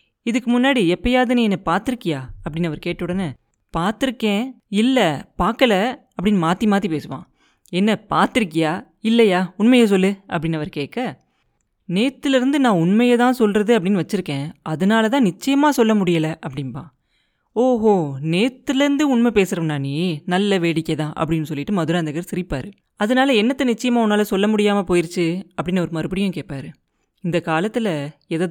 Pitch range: 170-245 Hz